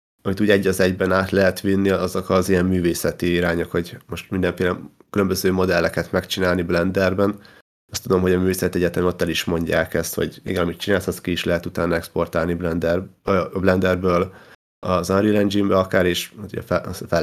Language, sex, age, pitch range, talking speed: Hungarian, male, 30-49, 90-95 Hz, 175 wpm